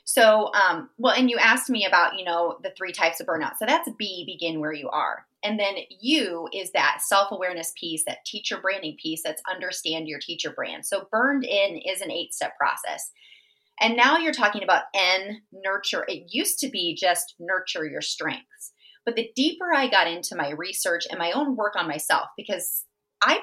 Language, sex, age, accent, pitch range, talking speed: English, female, 30-49, American, 175-245 Hz, 195 wpm